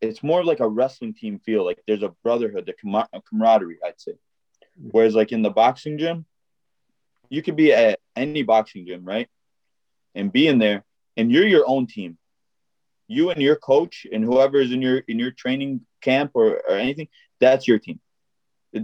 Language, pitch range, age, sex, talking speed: English, 110-145 Hz, 20-39, male, 190 wpm